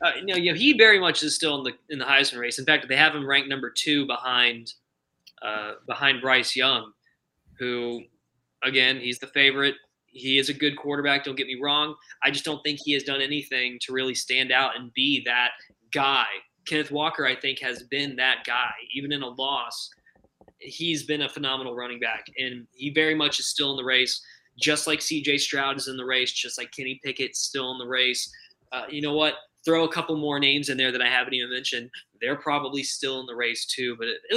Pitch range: 130-155 Hz